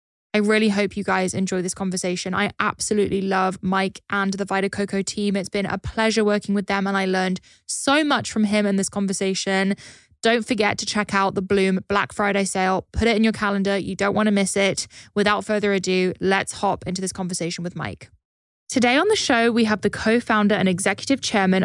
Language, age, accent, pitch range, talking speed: English, 10-29, British, 185-210 Hz, 210 wpm